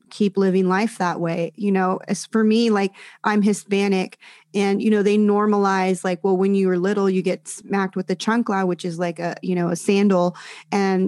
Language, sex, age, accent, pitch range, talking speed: English, female, 30-49, American, 185-210 Hz, 210 wpm